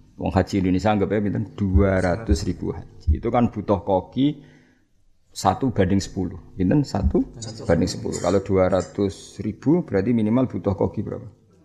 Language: Indonesian